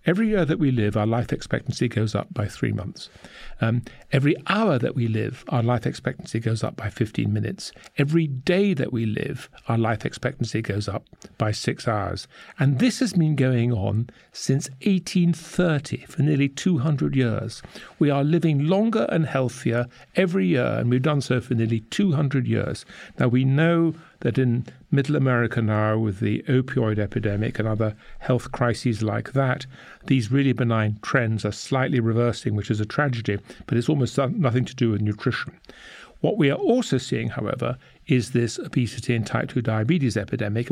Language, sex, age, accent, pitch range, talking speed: English, male, 50-69, British, 115-150 Hz, 175 wpm